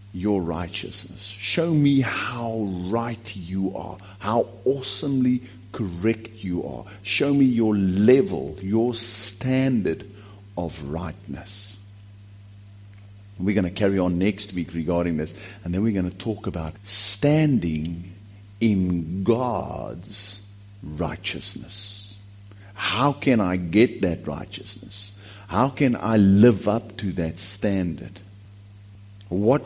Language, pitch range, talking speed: English, 95-105 Hz, 115 wpm